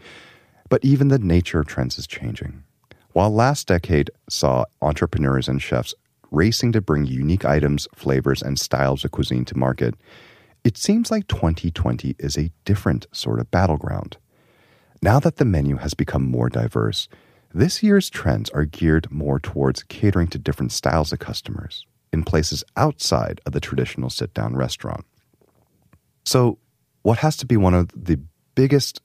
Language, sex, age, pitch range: Korean, male, 30-49, 70-105 Hz